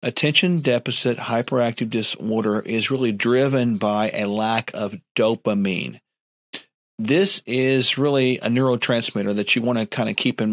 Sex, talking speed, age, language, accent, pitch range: male, 140 wpm, 50-69, English, American, 105-130 Hz